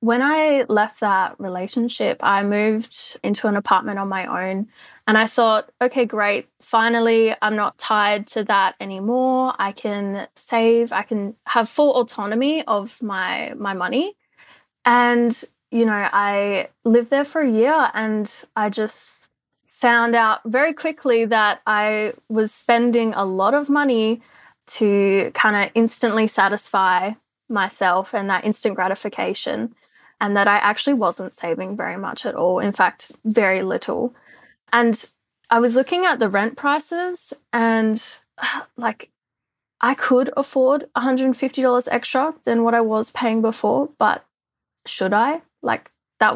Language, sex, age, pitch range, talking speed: English, female, 20-39, 205-245 Hz, 145 wpm